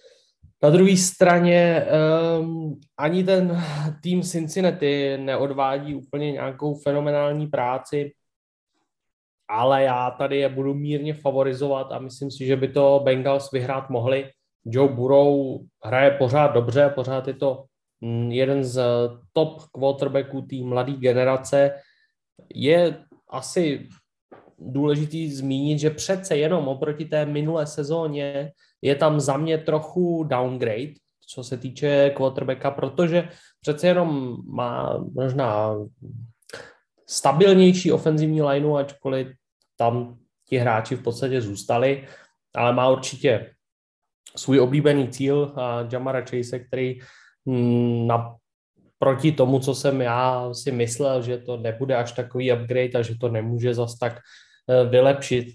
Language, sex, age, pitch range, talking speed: Slovak, male, 20-39, 125-150 Hz, 120 wpm